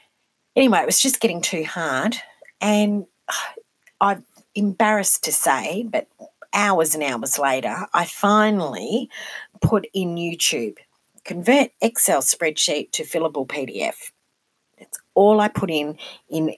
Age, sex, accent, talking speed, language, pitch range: 40-59, female, Australian, 125 wpm, English, 165-215 Hz